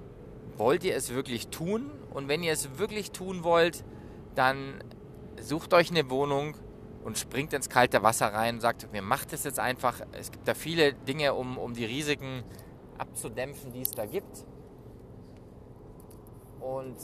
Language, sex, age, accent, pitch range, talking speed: English, male, 20-39, German, 115-145 Hz, 160 wpm